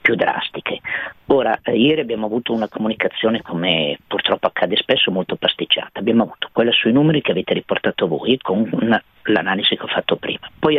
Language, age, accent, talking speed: Italian, 40-59, native, 175 wpm